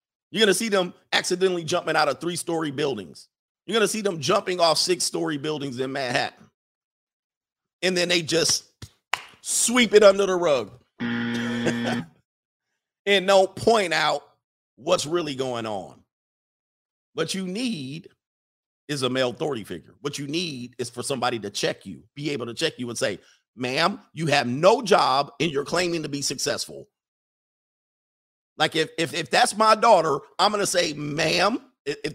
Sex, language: male, English